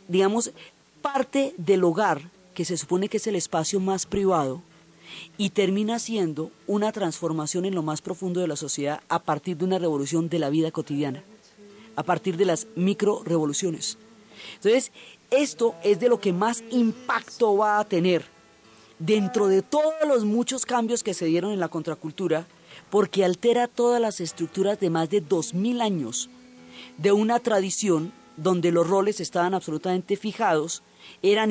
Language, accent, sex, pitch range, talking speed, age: Spanish, Colombian, female, 165-220 Hz, 160 wpm, 30-49